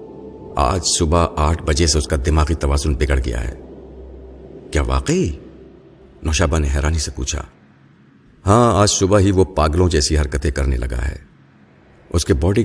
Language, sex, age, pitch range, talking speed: Urdu, male, 50-69, 70-95 Hz, 155 wpm